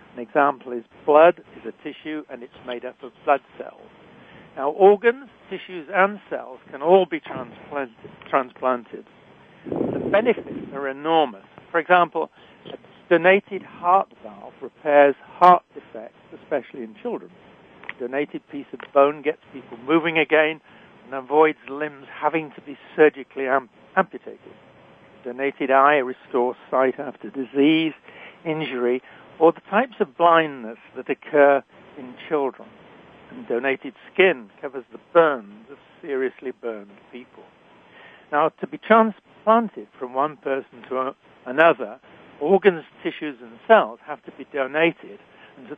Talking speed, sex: 135 wpm, male